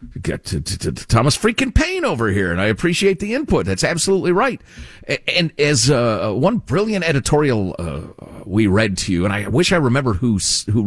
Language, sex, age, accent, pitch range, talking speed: English, male, 50-69, American, 95-150 Hz, 200 wpm